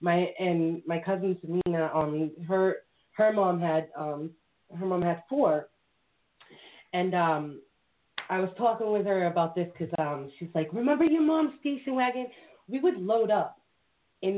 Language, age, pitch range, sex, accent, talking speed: English, 30-49, 165-220 Hz, female, American, 165 wpm